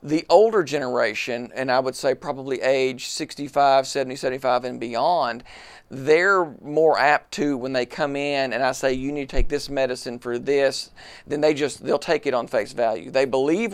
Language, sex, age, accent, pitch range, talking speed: Finnish, male, 50-69, American, 130-155 Hz, 190 wpm